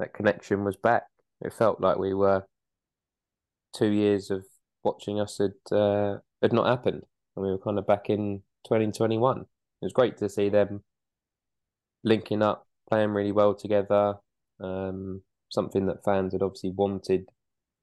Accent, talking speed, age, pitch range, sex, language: British, 160 wpm, 20-39, 90-100 Hz, male, English